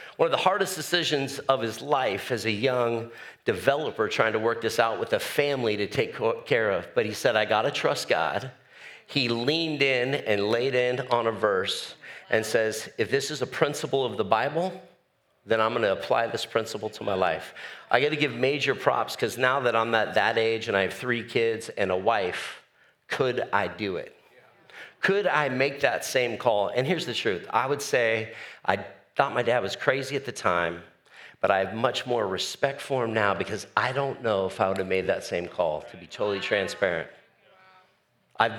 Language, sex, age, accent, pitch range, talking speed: English, male, 50-69, American, 110-145 Hz, 210 wpm